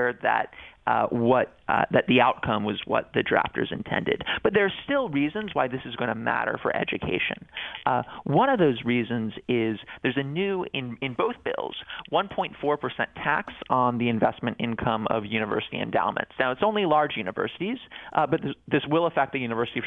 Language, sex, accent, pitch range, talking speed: English, male, American, 120-170 Hz, 185 wpm